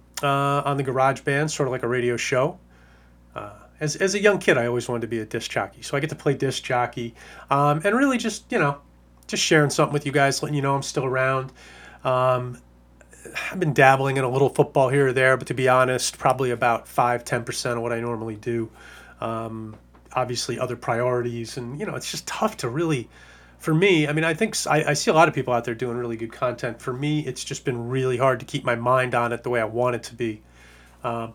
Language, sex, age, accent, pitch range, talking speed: English, male, 30-49, American, 120-145 Hz, 245 wpm